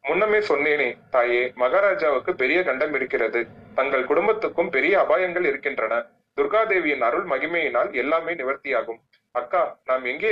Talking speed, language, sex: 115 wpm, Tamil, male